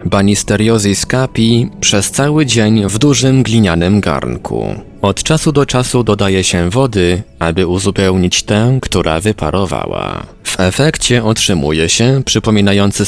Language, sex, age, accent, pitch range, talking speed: Polish, male, 20-39, native, 95-125 Hz, 120 wpm